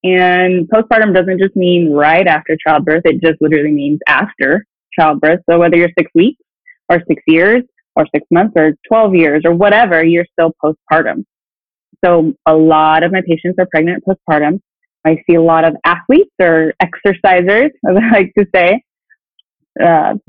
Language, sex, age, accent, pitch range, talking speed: English, female, 20-39, American, 170-230 Hz, 165 wpm